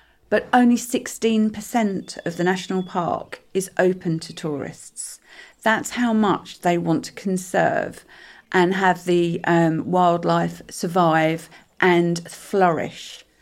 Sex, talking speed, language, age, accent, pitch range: female, 115 wpm, English, 40-59, British, 170-210 Hz